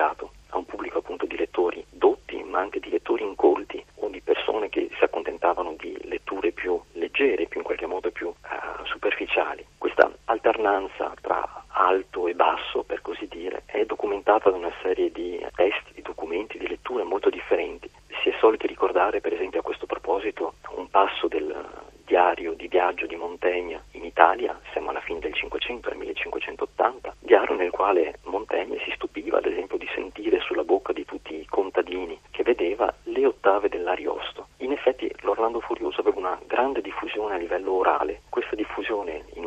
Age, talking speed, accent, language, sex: 40-59, 170 wpm, native, Italian, male